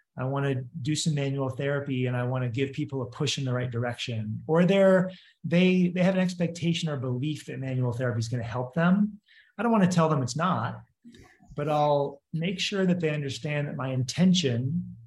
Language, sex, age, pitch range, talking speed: English, male, 30-49, 125-165 Hz, 215 wpm